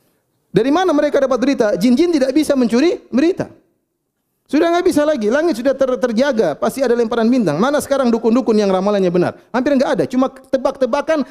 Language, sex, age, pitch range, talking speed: Indonesian, male, 30-49, 160-255 Hz, 175 wpm